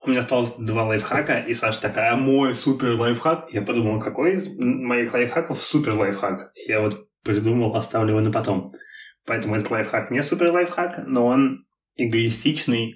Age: 20-39